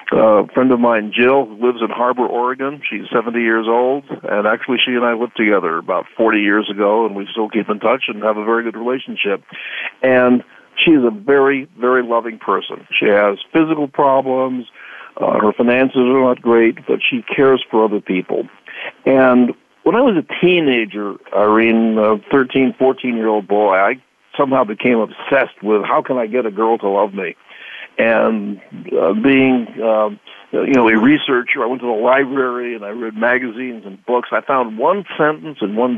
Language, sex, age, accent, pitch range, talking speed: English, male, 60-79, American, 110-130 Hz, 185 wpm